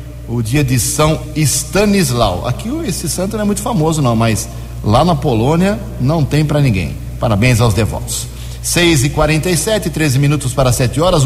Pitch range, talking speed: 115-150 Hz, 170 wpm